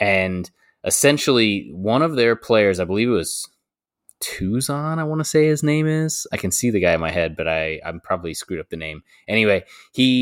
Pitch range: 100-125 Hz